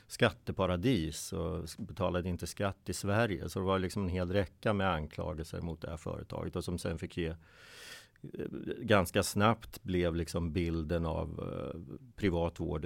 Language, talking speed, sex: Swedish, 150 wpm, male